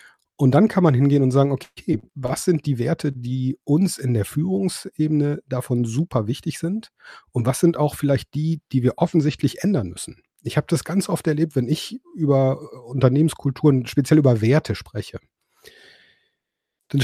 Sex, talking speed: male, 165 wpm